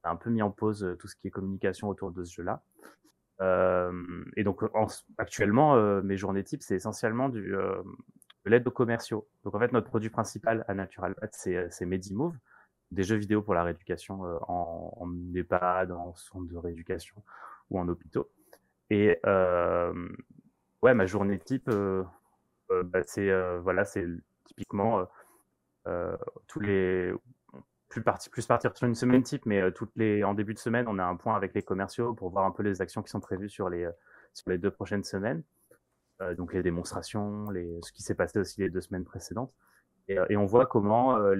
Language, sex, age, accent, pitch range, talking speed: French, male, 20-39, French, 90-110 Hz, 205 wpm